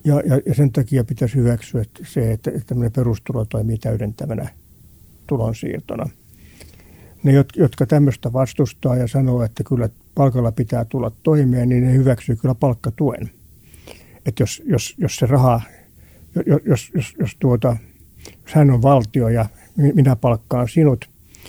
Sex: male